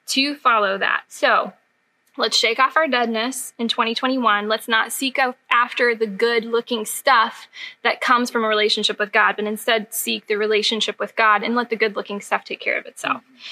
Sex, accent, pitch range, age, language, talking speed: female, American, 220-275 Hz, 10-29, English, 195 wpm